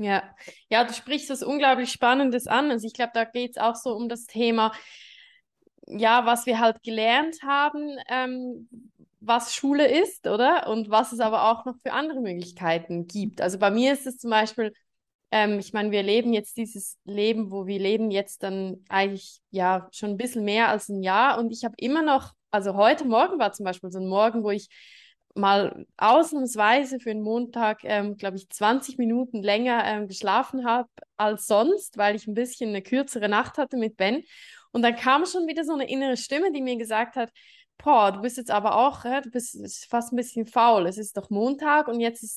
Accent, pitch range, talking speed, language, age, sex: German, 210-255 Hz, 205 wpm, German, 20-39, female